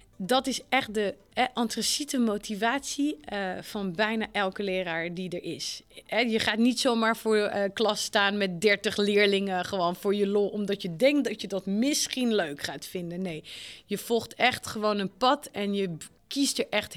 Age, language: 30-49, Dutch